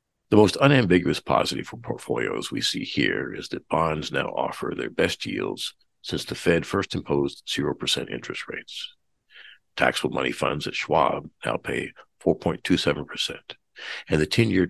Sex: male